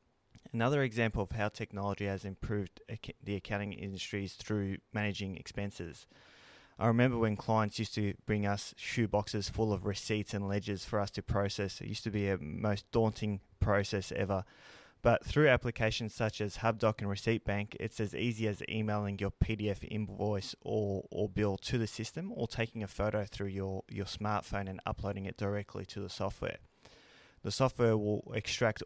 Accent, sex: Australian, male